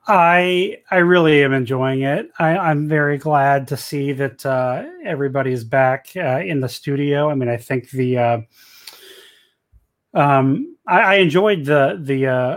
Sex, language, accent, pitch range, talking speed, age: male, English, American, 120-150 Hz, 160 wpm, 30-49